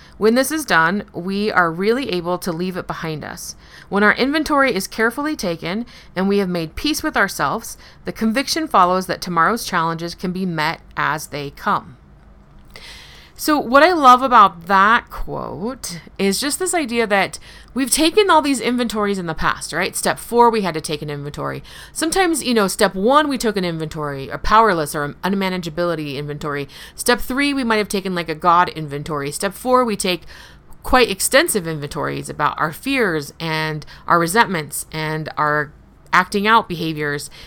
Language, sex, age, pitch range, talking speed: English, female, 30-49, 165-240 Hz, 175 wpm